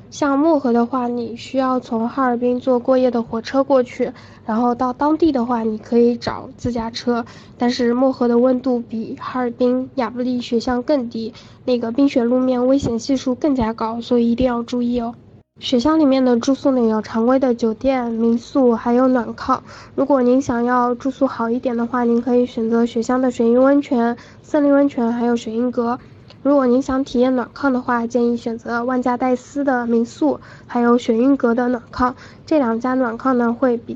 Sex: female